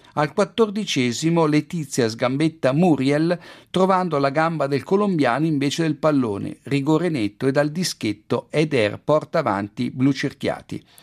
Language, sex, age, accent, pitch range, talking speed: Italian, male, 50-69, native, 130-160 Hz, 120 wpm